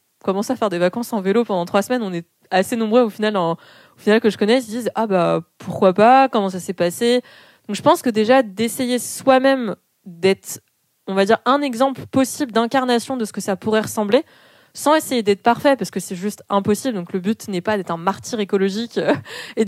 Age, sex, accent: 20-39, female, French